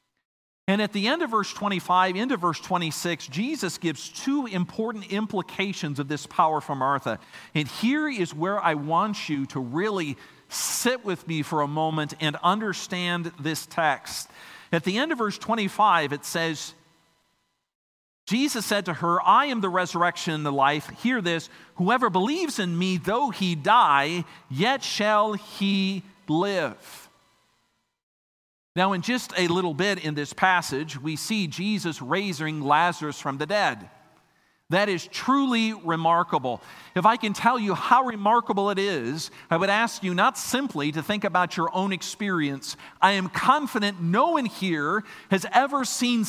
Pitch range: 165-225 Hz